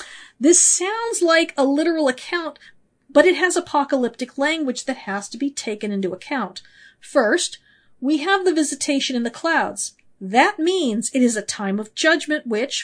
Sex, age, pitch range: female, 40-59, 235-320 Hz